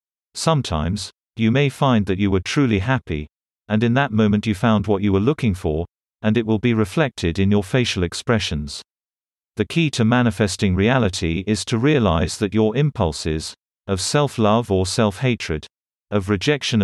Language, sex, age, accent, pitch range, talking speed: English, male, 40-59, British, 95-120 Hz, 165 wpm